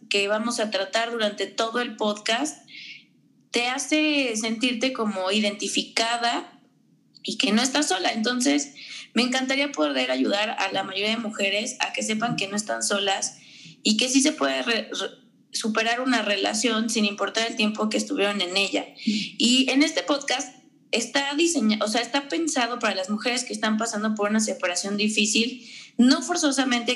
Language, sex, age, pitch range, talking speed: Spanish, female, 20-39, 205-250 Hz, 165 wpm